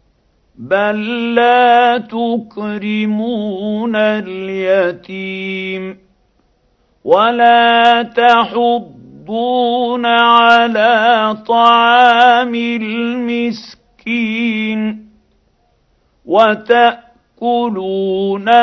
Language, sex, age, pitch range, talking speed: Arabic, male, 50-69, 215-235 Hz, 30 wpm